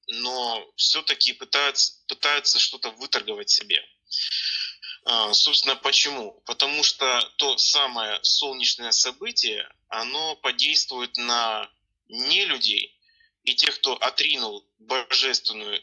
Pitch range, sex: 115-160 Hz, male